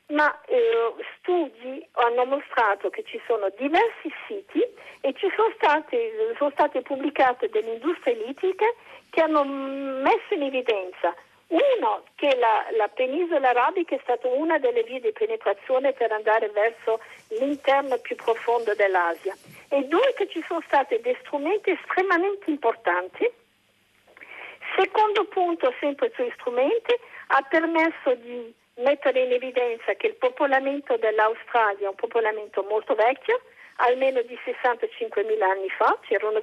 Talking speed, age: 130 wpm, 50-69